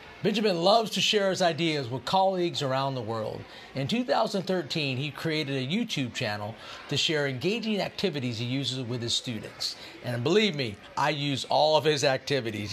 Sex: male